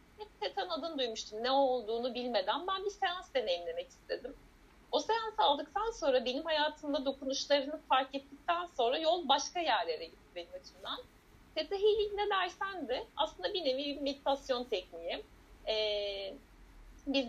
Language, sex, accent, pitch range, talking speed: Turkish, female, native, 235-355 Hz, 135 wpm